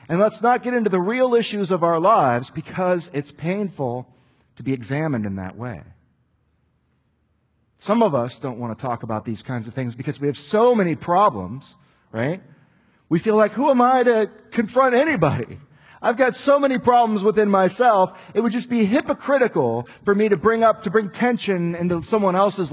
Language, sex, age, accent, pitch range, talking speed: English, male, 50-69, American, 125-190 Hz, 185 wpm